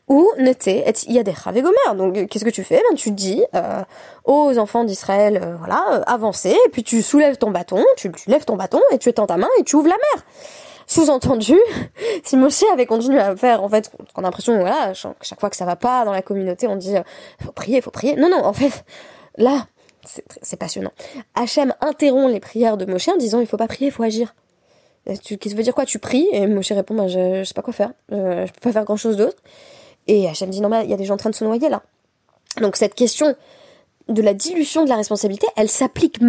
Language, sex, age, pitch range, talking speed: French, female, 20-39, 200-270 Hz, 240 wpm